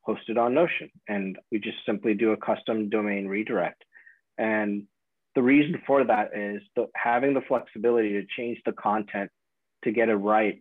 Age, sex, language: 30-49, male, English